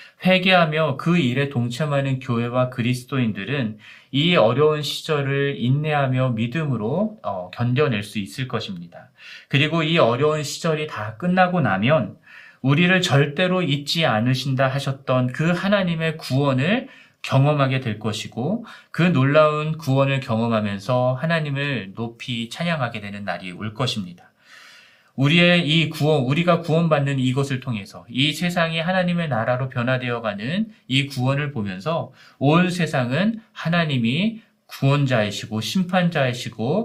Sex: male